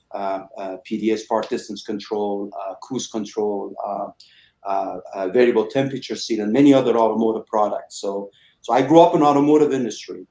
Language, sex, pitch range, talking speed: English, male, 110-125 Hz, 165 wpm